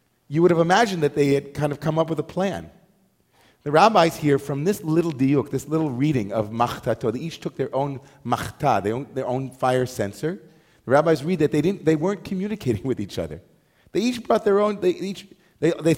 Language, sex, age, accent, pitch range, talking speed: English, male, 40-59, American, 115-155 Hz, 215 wpm